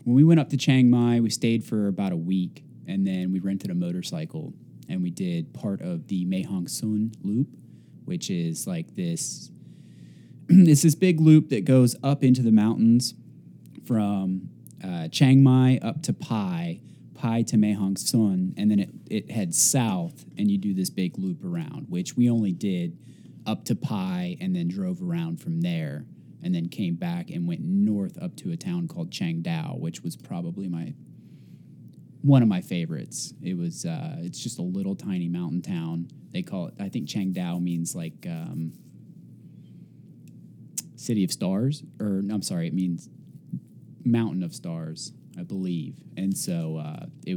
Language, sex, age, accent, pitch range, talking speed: English, male, 20-39, American, 110-175 Hz, 175 wpm